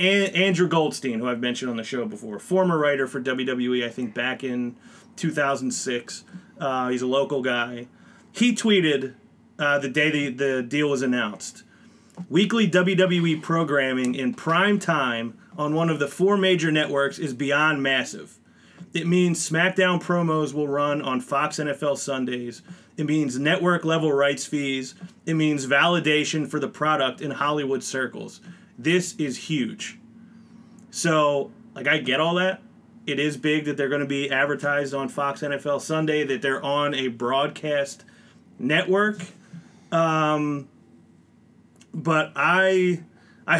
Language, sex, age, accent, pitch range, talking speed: English, male, 30-49, American, 140-185 Hz, 145 wpm